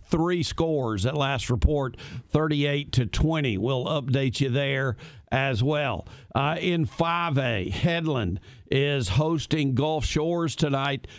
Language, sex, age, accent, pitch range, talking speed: English, male, 50-69, American, 130-155 Hz, 125 wpm